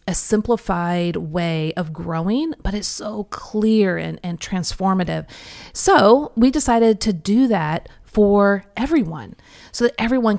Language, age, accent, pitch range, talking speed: English, 40-59, American, 180-230 Hz, 135 wpm